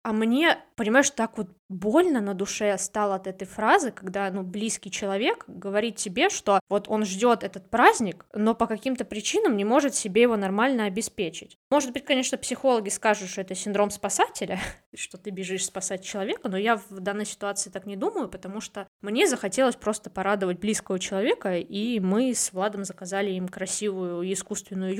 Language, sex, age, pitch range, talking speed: Russian, female, 20-39, 200-255 Hz, 175 wpm